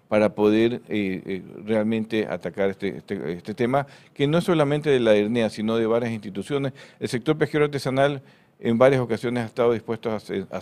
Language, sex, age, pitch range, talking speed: Spanish, male, 50-69, 105-130 Hz, 185 wpm